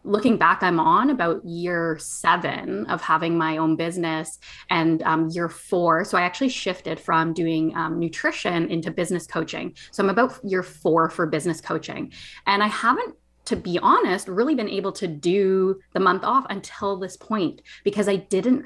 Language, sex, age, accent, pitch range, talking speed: English, female, 20-39, American, 165-205 Hz, 175 wpm